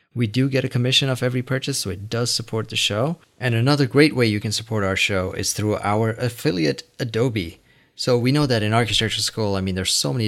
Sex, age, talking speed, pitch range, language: male, 30-49, 235 wpm, 95-120 Hz, English